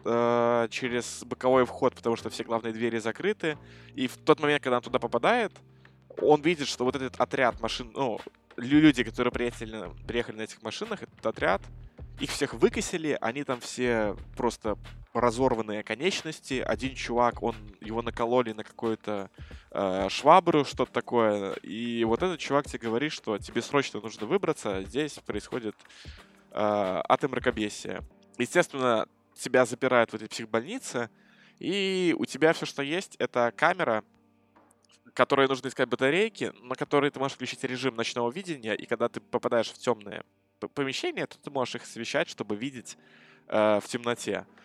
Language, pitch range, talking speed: Russian, 110-135 Hz, 150 wpm